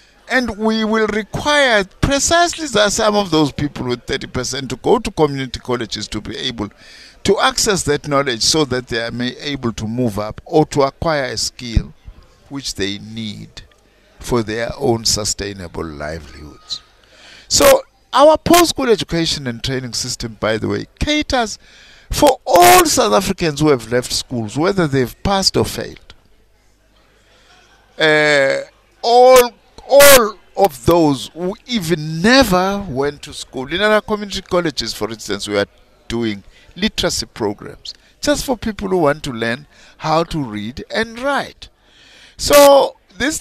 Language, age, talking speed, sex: English, 50-69, 145 wpm, male